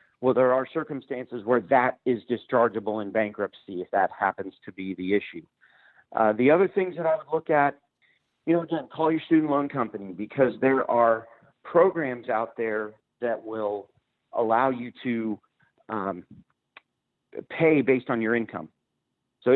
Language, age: English, 40-59